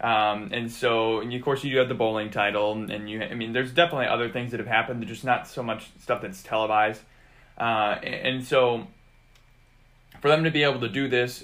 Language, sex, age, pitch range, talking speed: English, male, 20-39, 110-130 Hz, 215 wpm